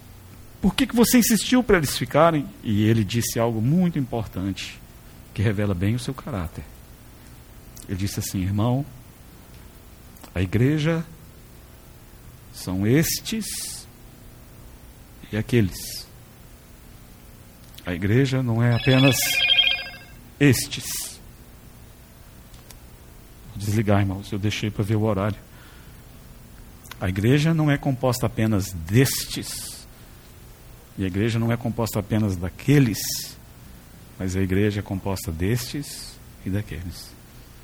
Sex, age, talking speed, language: male, 50-69, 110 wpm, Portuguese